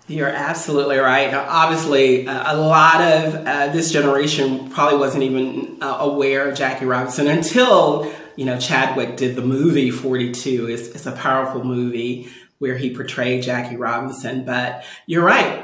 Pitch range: 130-165 Hz